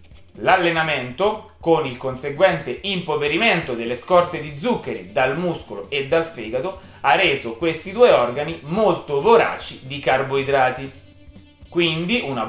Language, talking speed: Italian, 120 wpm